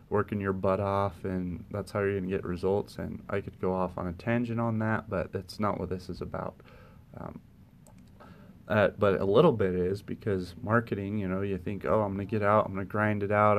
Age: 30-49